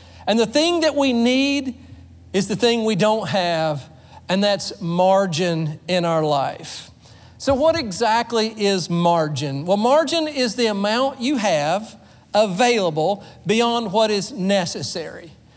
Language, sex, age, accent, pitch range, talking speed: English, male, 40-59, American, 190-270 Hz, 135 wpm